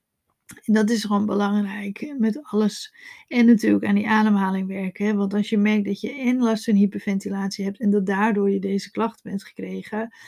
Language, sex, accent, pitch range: Dutch, female, Dutch, 195-235 Hz